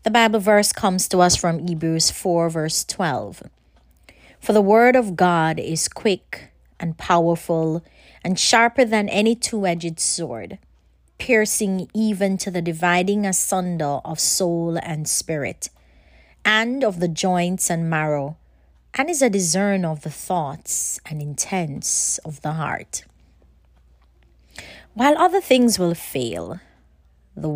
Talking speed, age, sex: 130 wpm, 30-49, female